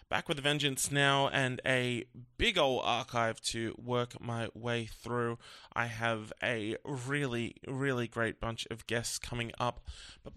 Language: English